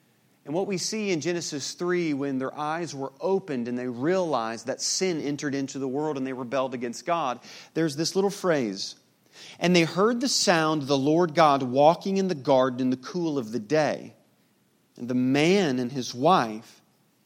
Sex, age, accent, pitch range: male, 40-59, American, 135-175 Hz